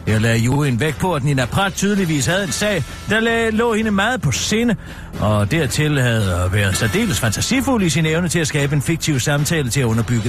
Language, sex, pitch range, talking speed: Danish, male, 130-195 Hz, 215 wpm